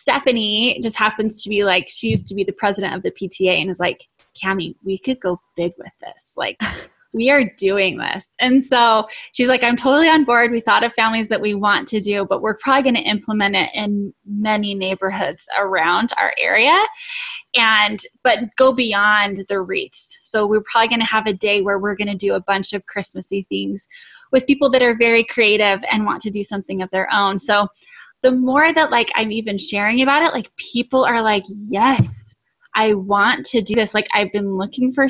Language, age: English, 10-29